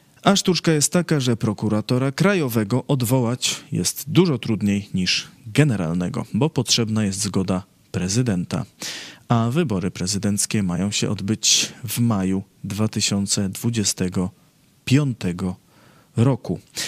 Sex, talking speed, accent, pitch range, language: male, 100 wpm, native, 100-130 Hz, Polish